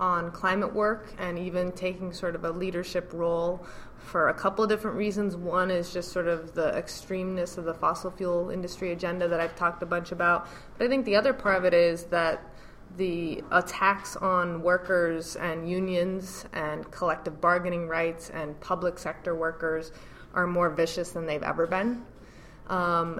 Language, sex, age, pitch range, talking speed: English, female, 20-39, 165-190 Hz, 175 wpm